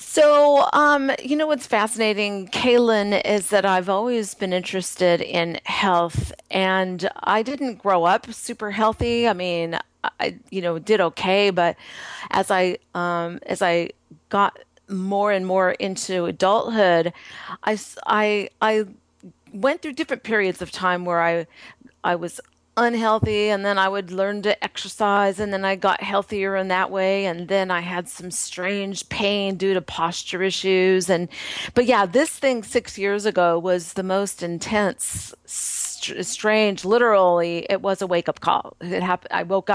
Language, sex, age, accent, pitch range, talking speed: English, female, 40-59, American, 180-215 Hz, 155 wpm